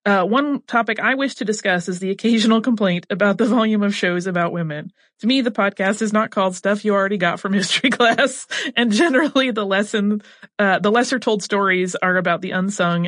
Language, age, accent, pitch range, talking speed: English, 30-49, American, 185-240 Hz, 200 wpm